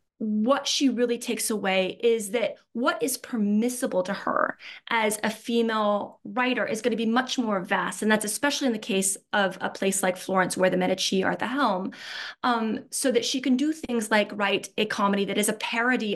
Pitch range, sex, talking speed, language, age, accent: 195-245 Hz, female, 210 wpm, English, 20-39, American